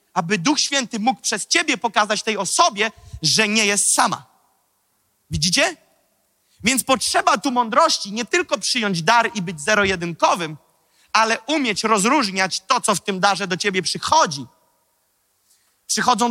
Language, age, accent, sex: Polish, 30-49, native, male